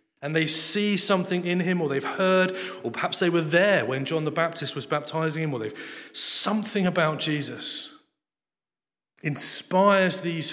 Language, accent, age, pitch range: English, British, 30-49, 125-195 Hz